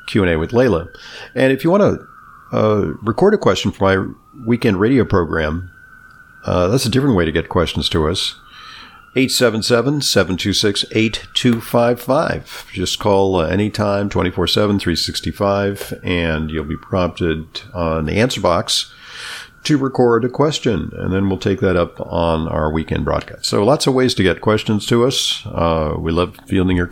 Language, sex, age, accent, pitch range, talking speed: English, male, 50-69, American, 85-110 Hz, 155 wpm